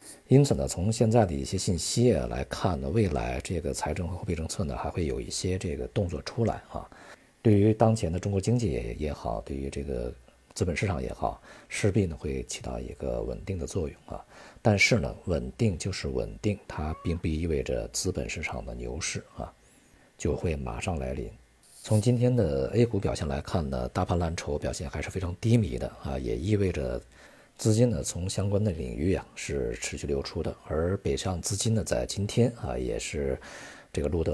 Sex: male